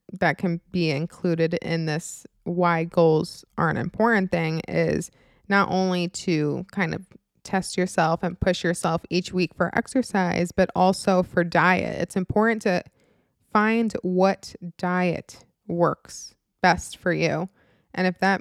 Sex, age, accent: female, 20-39, American